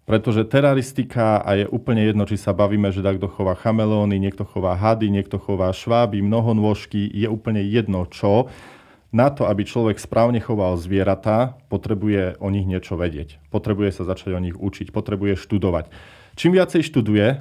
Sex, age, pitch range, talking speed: male, 40-59, 100-115 Hz, 160 wpm